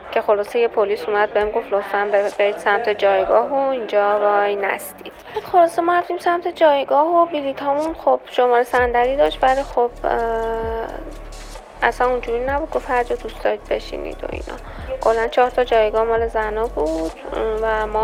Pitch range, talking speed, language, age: 210-260 Hz, 160 wpm, Persian, 10-29